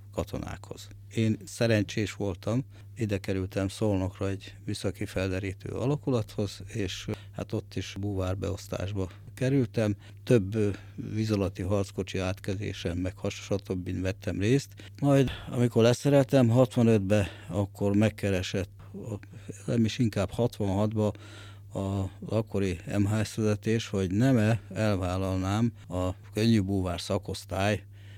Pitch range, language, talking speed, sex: 95-110 Hz, Hungarian, 95 wpm, male